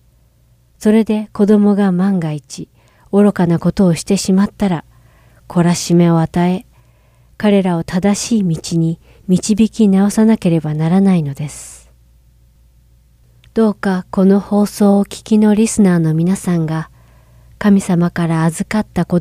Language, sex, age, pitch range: Japanese, female, 40-59, 160-200 Hz